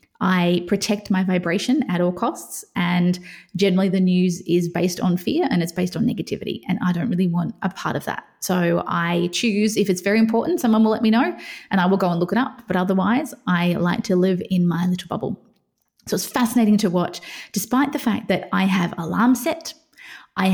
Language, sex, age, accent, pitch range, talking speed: English, female, 20-39, Australian, 185-225 Hz, 215 wpm